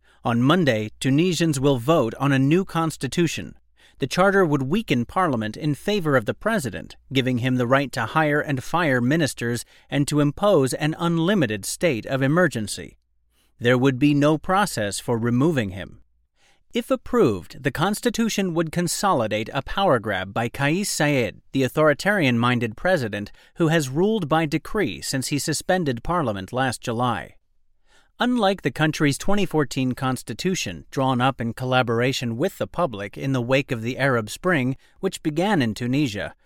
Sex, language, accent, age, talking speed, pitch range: male, English, American, 40-59, 155 wpm, 120-165 Hz